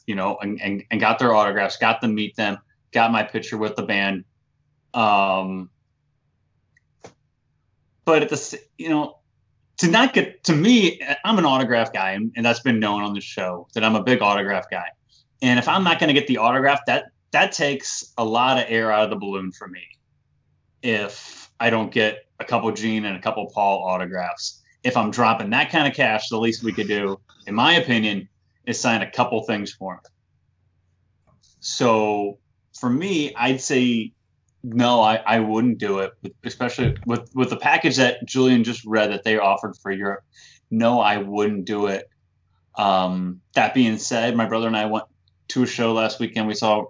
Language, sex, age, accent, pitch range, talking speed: English, male, 20-39, American, 100-120 Hz, 190 wpm